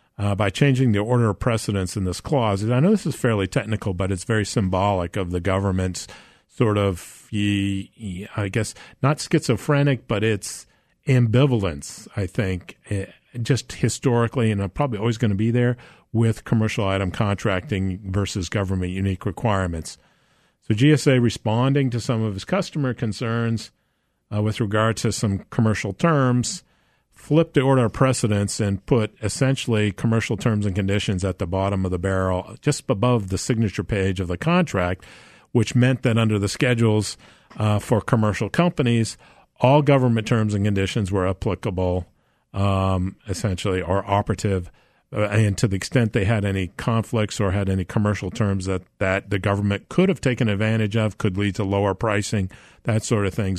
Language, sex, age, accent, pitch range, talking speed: English, male, 50-69, American, 100-120 Hz, 165 wpm